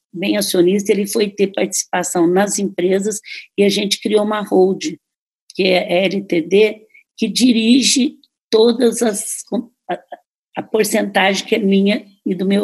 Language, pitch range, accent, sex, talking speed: Portuguese, 195-240 Hz, Brazilian, female, 140 wpm